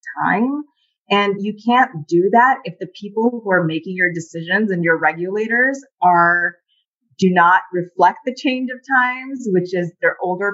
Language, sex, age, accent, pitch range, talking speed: English, female, 20-39, American, 170-210 Hz, 165 wpm